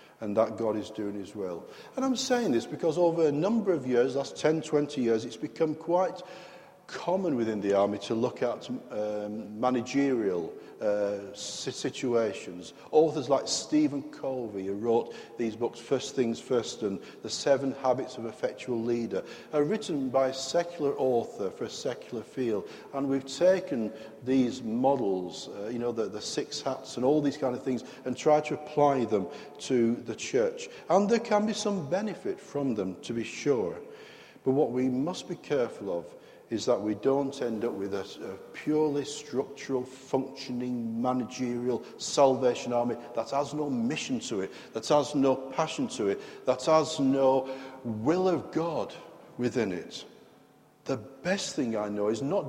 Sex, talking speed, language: male, 170 wpm, English